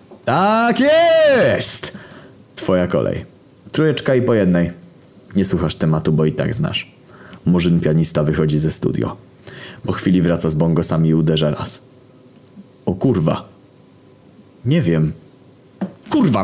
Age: 30-49